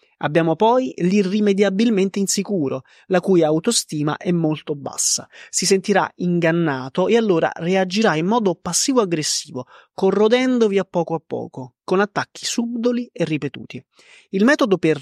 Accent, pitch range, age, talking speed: native, 150-205 Hz, 30-49, 130 wpm